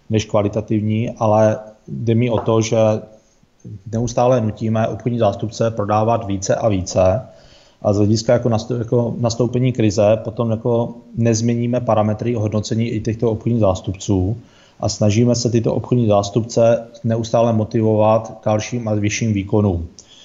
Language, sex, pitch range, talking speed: Czech, male, 105-115 Hz, 130 wpm